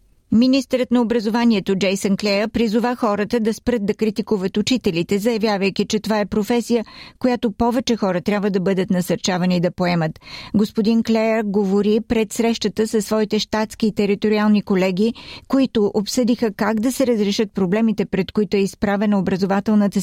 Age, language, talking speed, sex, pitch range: 50-69, Bulgarian, 145 wpm, female, 195-225 Hz